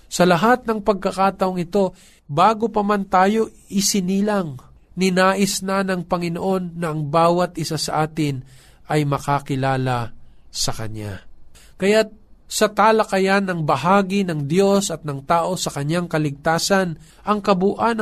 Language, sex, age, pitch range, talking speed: Filipino, male, 50-69, 155-210 Hz, 130 wpm